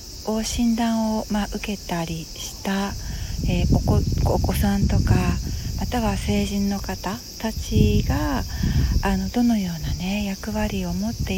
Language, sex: Japanese, female